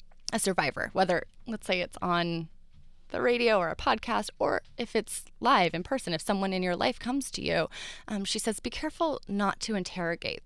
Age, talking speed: 20-39, 195 wpm